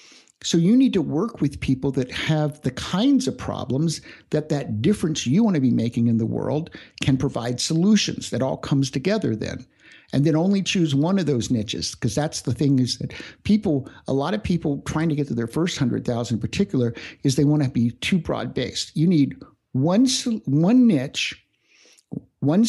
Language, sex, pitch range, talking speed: English, male, 135-180 Hz, 200 wpm